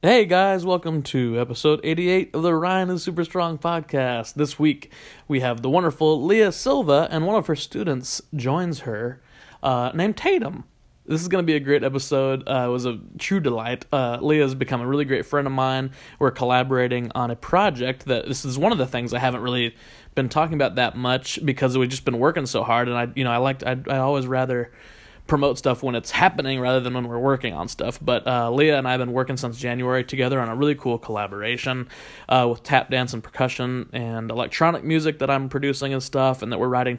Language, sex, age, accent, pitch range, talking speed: English, male, 20-39, American, 125-150 Hz, 220 wpm